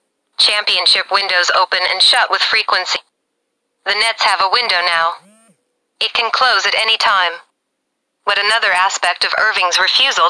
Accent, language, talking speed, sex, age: American, English, 145 wpm, female, 30-49